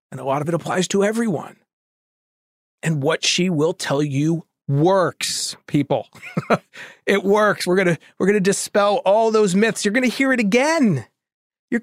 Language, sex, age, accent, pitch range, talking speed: English, male, 40-59, American, 155-210 Hz, 160 wpm